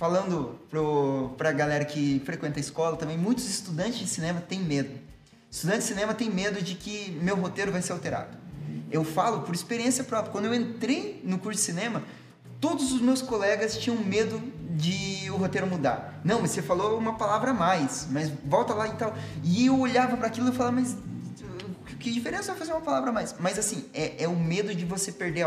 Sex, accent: male, Brazilian